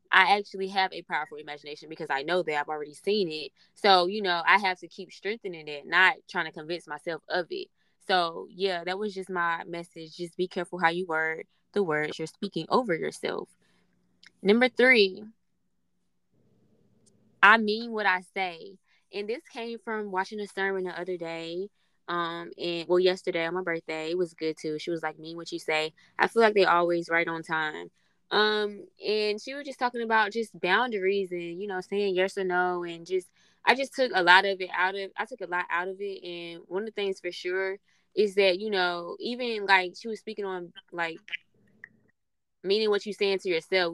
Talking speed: 205 wpm